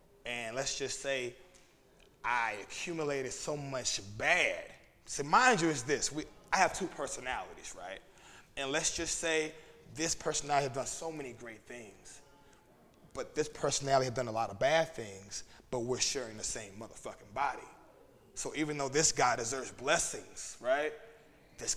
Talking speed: 160 wpm